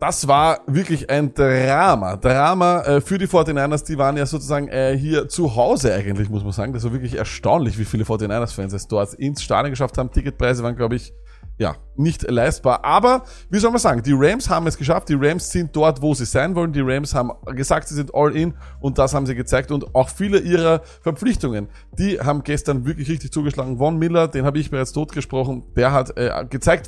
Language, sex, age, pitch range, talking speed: German, male, 20-39, 120-160 Hz, 205 wpm